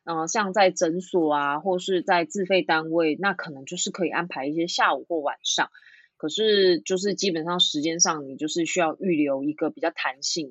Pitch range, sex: 155-195 Hz, female